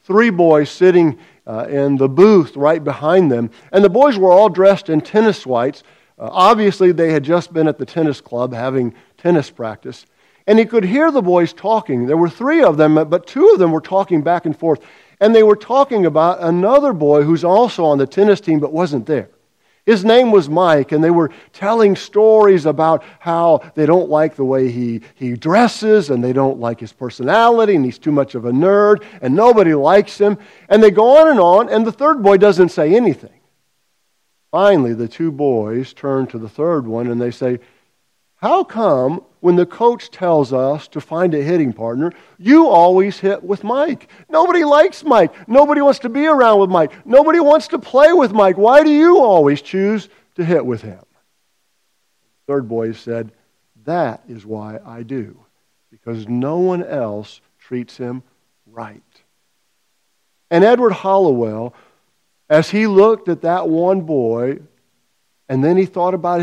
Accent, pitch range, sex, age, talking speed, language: American, 135-210 Hz, male, 50-69, 180 wpm, English